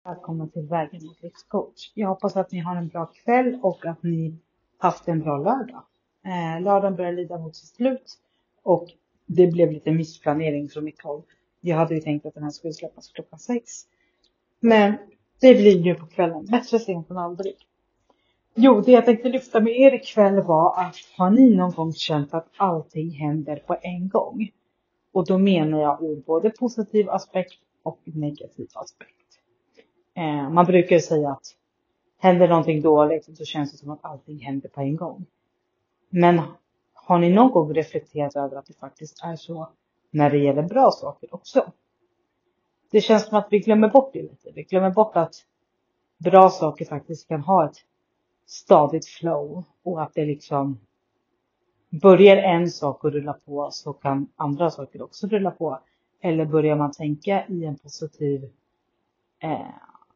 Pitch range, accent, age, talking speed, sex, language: 155-190 Hz, native, 40-59, 170 wpm, female, Swedish